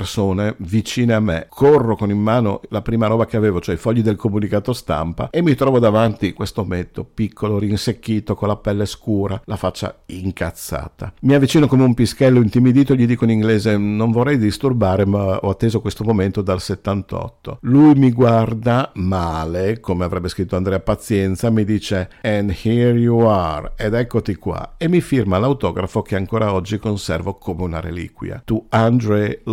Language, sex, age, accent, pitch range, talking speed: Italian, male, 50-69, native, 95-120 Hz, 170 wpm